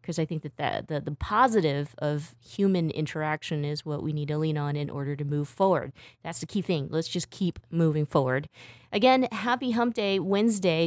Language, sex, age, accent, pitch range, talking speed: English, female, 20-39, American, 150-195 Hz, 200 wpm